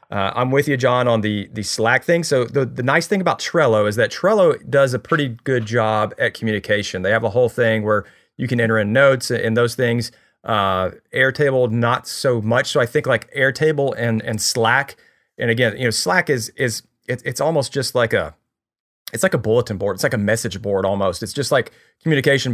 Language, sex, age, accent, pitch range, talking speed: English, male, 40-59, American, 110-130 Hz, 220 wpm